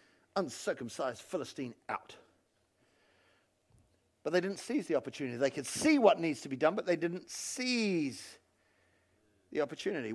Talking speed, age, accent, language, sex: 135 wpm, 50-69, British, English, male